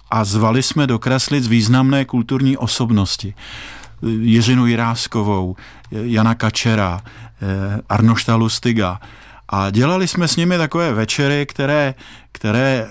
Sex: male